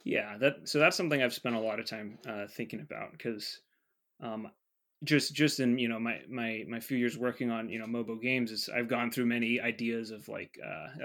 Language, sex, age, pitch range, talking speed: English, male, 20-39, 110-125 Hz, 225 wpm